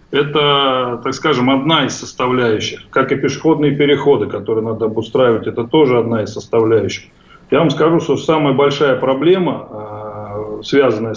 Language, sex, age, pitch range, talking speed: Russian, male, 30-49, 110-145 Hz, 140 wpm